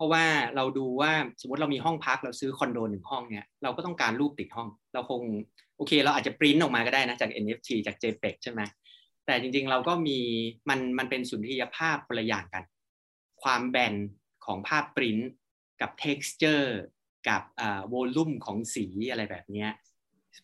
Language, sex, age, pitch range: Thai, male, 30-49, 105-145 Hz